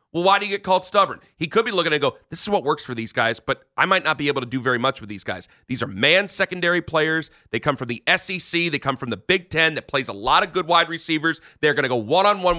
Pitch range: 160-215 Hz